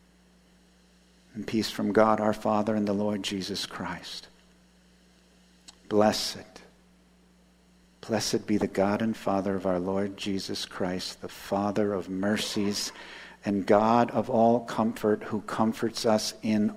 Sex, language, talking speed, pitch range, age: male, English, 125 wpm, 85-110 Hz, 50-69